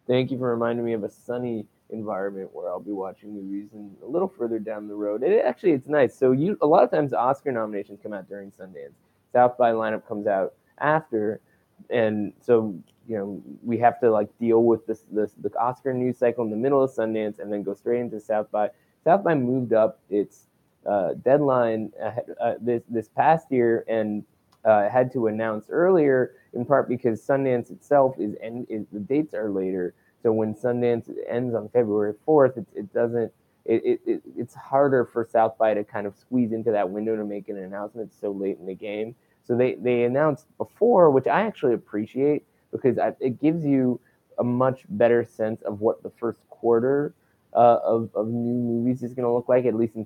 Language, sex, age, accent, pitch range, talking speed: English, male, 20-39, American, 105-125 Hz, 205 wpm